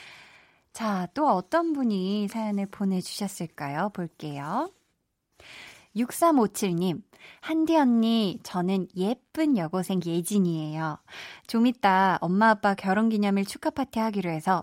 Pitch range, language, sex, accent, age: 190-270 Hz, Korean, female, native, 20-39